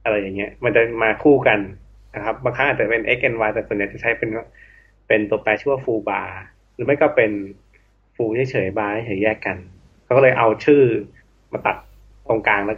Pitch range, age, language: 100-125 Hz, 20-39, Thai